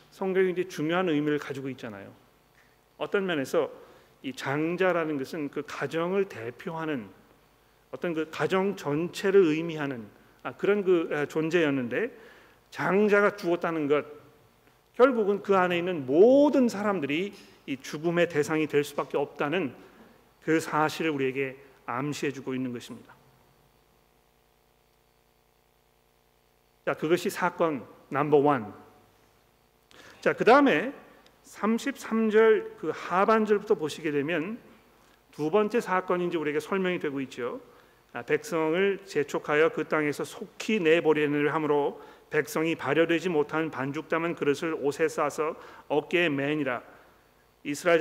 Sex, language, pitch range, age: male, Korean, 140-180 Hz, 40-59